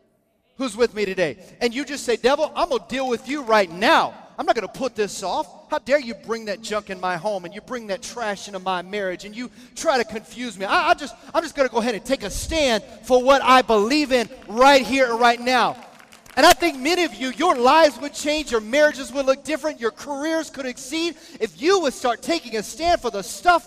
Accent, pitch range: American, 195-280 Hz